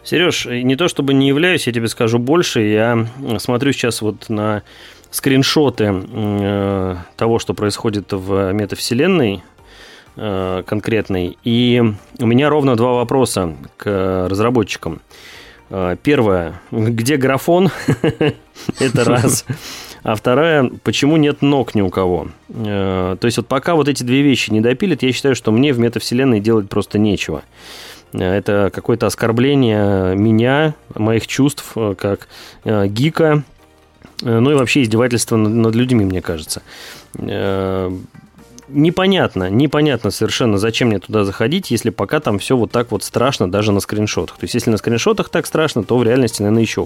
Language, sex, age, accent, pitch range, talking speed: Russian, male, 30-49, native, 105-135 Hz, 140 wpm